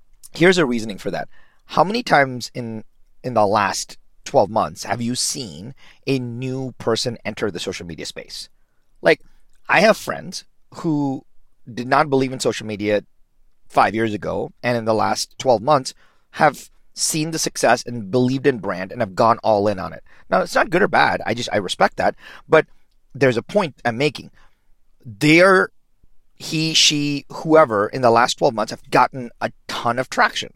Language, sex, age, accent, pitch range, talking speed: English, male, 40-59, American, 115-155 Hz, 180 wpm